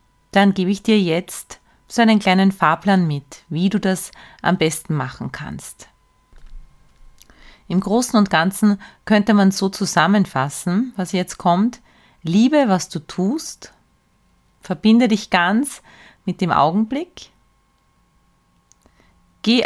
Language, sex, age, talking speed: German, female, 30-49, 120 wpm